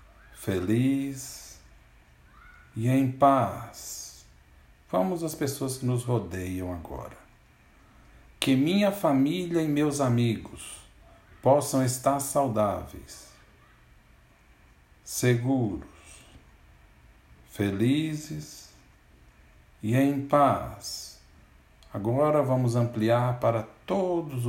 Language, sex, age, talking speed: Portuguese, male, 60-79, 75 wpm